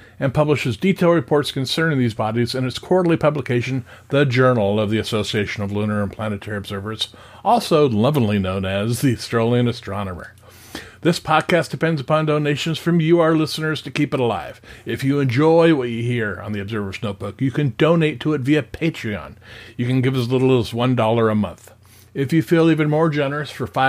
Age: 50-69